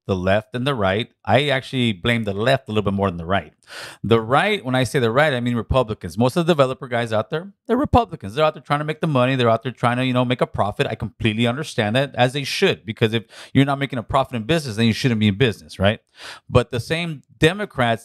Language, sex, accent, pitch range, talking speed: English, male, American, 110-135 Hz, 270 wpm